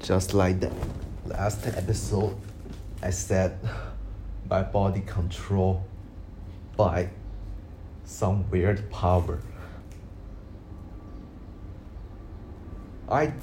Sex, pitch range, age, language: male, 90-100 Hz, 30-49, Chinese